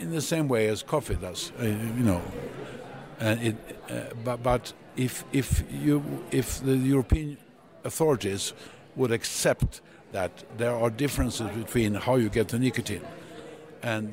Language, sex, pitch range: English, male, 95-125 Hz